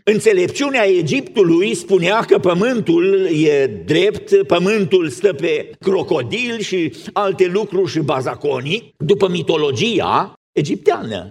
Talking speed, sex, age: 100 wpm, male, 50-69